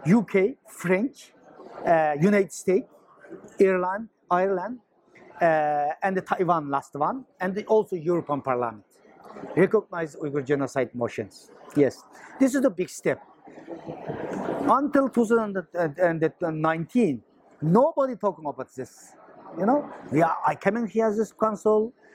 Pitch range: 175-220 Hz